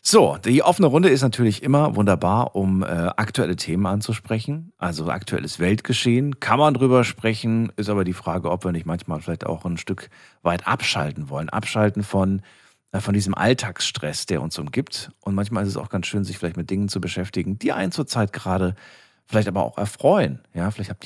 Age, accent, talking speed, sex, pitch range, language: 40-59, German, 195 wpm, male, 90-115 Hz, German